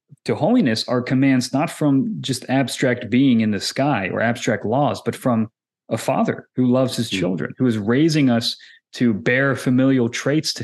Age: 30-49